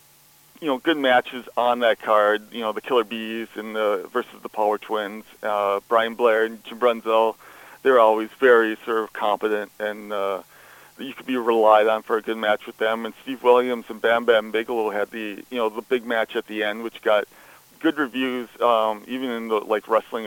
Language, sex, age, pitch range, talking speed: English, male, 40-59, 105-120 Hz, 205 wpm